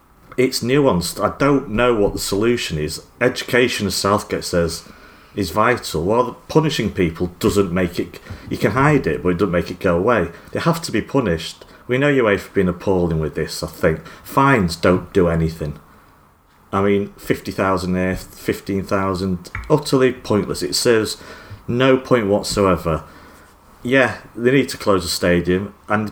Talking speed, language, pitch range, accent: 160 wpm, English, 90-110 Hz, British